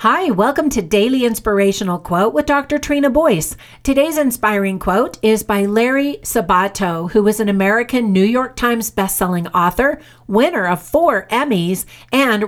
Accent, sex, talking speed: American, female, 150 wpm